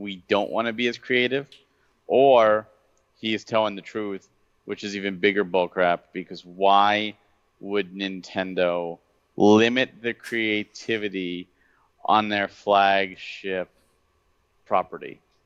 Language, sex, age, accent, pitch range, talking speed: English, male, 40-59, American, 95-115 Hz, 115 wpm